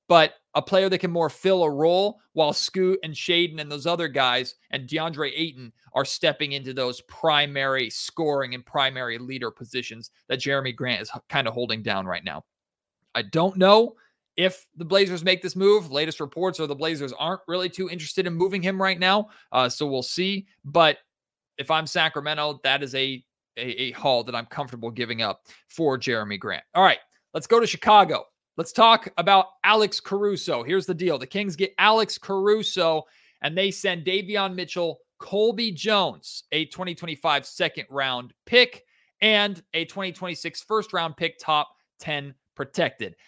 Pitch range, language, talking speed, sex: 135-190 Hz, English, 170 wpm, male